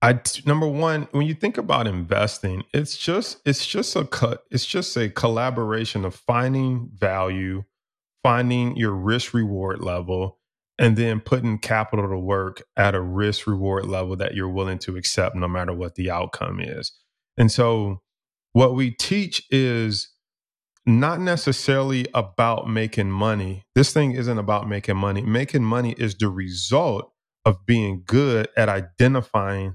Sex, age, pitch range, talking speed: male, 20-39, 100-130 Hz, 155 wpm